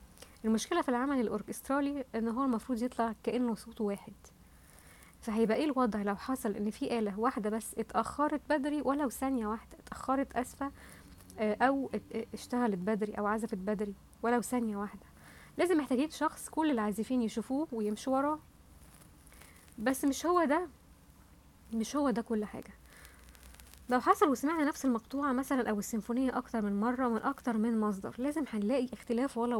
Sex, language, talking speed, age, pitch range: female, English, 150 wpm, 20-39, 215-265 Hz